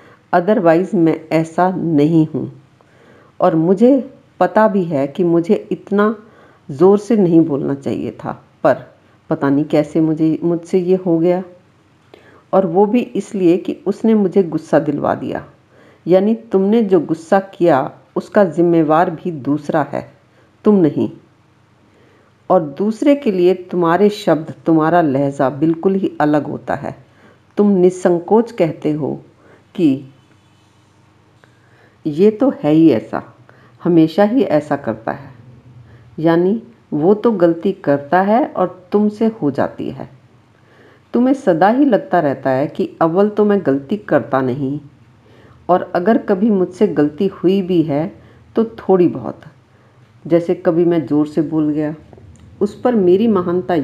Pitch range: 140-190 Hz